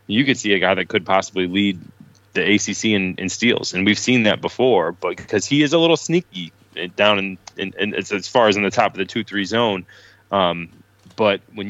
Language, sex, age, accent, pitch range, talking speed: English, male, 20-39, American, 95-105 Hz, 200 wpm